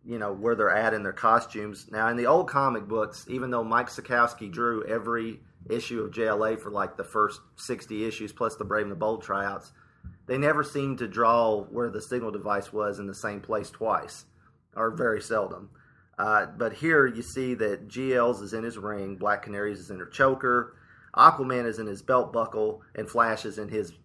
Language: English